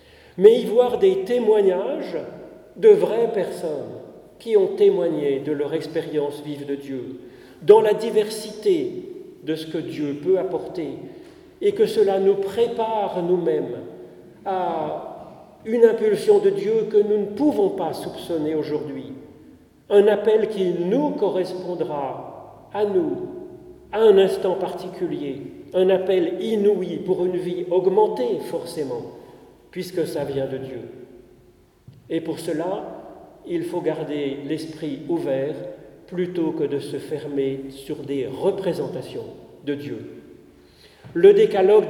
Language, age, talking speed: French, 40-59, 125 wpm